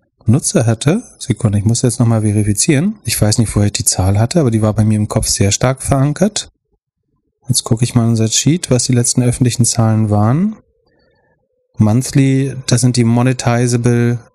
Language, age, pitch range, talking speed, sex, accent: German, 30-49, 105-130 Hz, 190 wpm, male, German